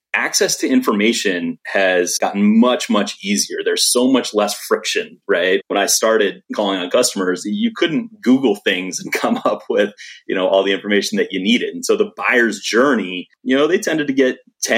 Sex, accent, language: male, American, English